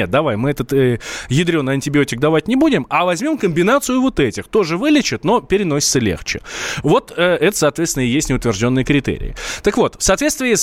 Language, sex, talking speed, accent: Russian, male, 175 wpm, native